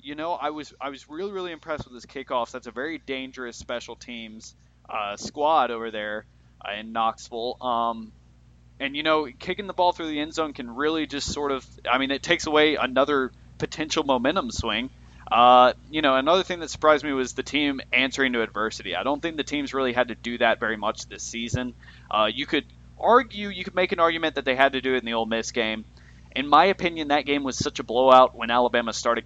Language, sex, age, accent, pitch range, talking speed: English, male, 30-49, American, 110-140 Hz, 225 wpm